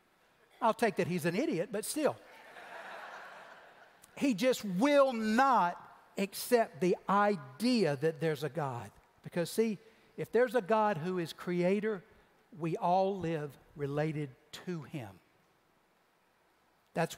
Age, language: 60-79, English